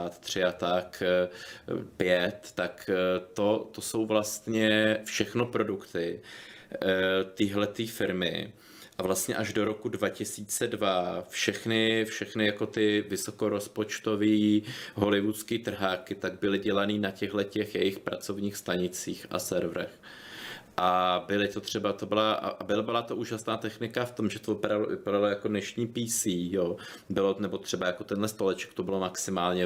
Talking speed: 130 wpm